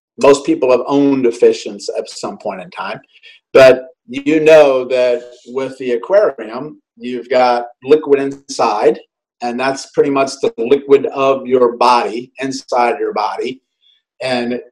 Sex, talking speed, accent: male, 140 wpm, American